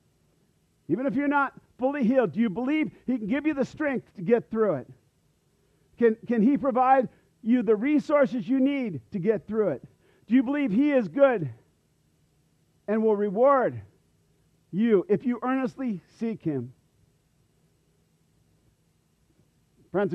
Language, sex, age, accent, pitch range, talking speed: English, male, 50-69, American, 185-255 Hz, 145 wpm